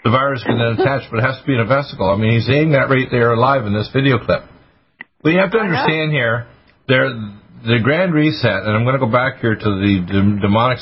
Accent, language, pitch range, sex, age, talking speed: American, English, 110-130 Hz, male, 50-69, 245 wpm